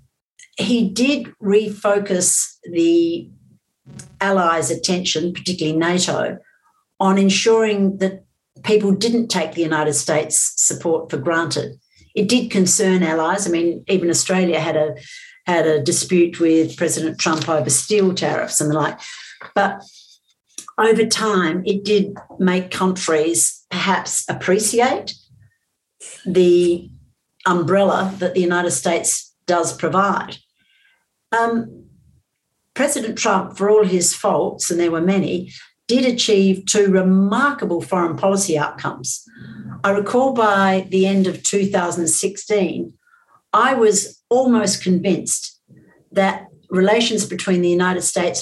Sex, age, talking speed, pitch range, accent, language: female, 60-79, 115 wpm, 170-205 Hz, Australian, English